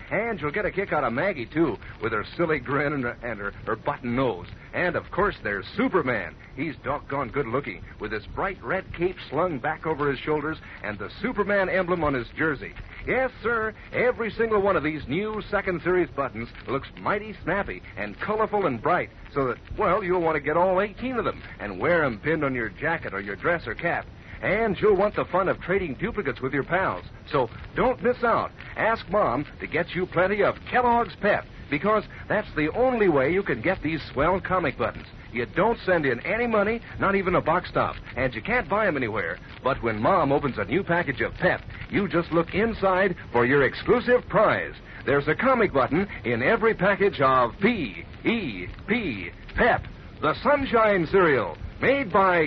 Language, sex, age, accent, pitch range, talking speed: English, male, 60-79, American, 145-215 Hz, 195 wpm